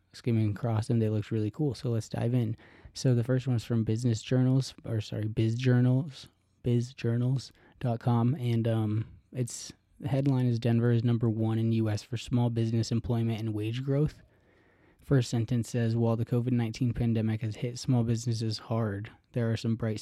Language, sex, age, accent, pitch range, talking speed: English, male, 20-39, American, 110-125 Hz, 175 wpm